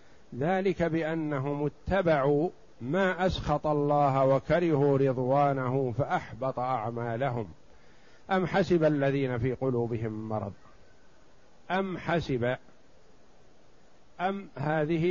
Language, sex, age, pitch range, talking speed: Arabic, male, 50-69, 125-165 Hz, 80 wpm